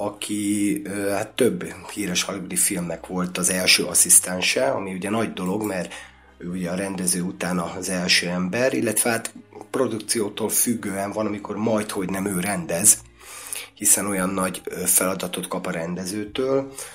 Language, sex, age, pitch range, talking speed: Hungarian, male, 30-49, 90-105 Hz, 140 wpm